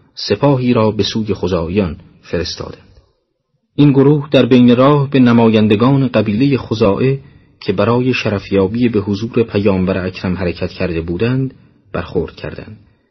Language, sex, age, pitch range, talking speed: Persian, male, 40-59, 95-130 Hz, 125 wpm